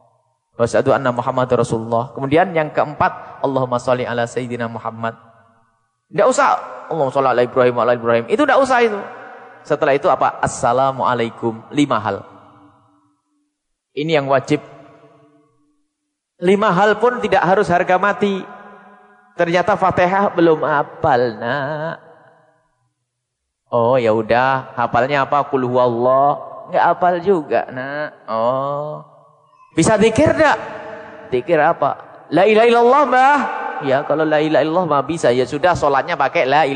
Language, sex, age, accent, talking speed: English, male, 30-49, Indonesian, 120 wpm